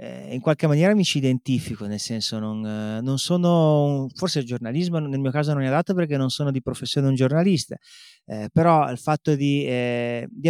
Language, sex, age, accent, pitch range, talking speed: Italian, male, 30-49, native, 130-180 Hz, 190 wpm